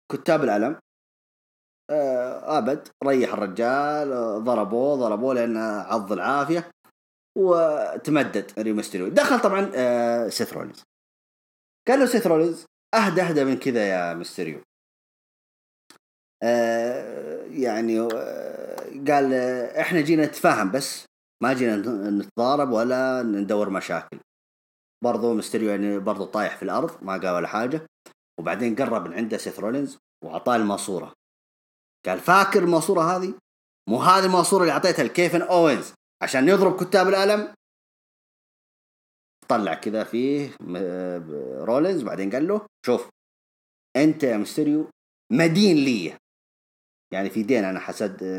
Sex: male